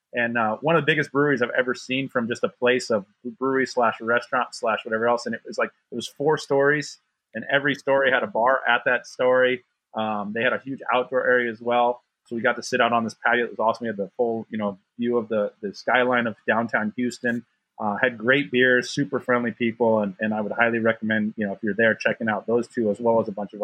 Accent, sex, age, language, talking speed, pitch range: American, male, 30-49, English, 255 wpm, 115-135 Hz